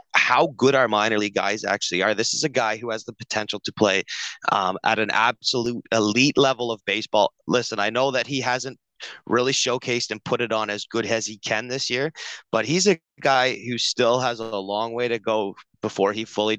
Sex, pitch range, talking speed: male, 110-135 Hz, 215 wpm